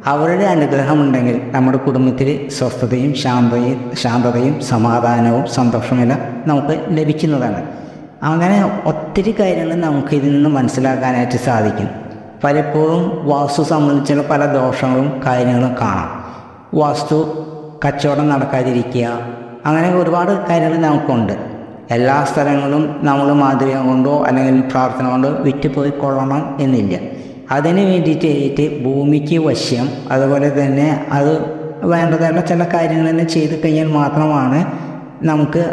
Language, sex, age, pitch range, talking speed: Malayalam, female, 20-39, 130-150 Hz, 100 wpm